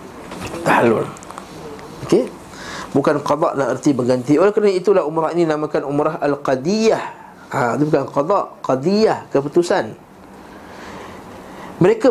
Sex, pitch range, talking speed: male, 130-165 Hz, 115 wpm